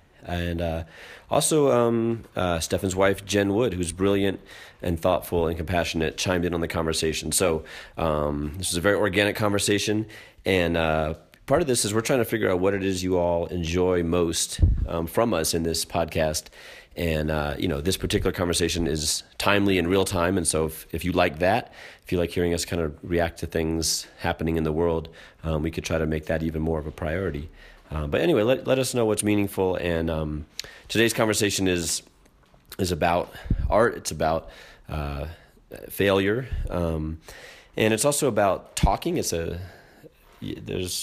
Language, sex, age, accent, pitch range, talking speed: English, male, 30-49, American, 80-95 Hz, 185 wpm